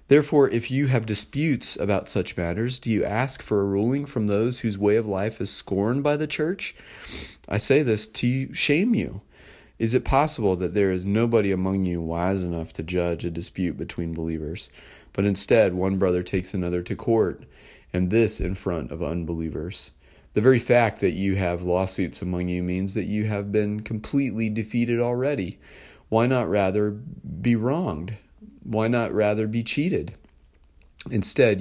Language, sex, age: English, male, 30-49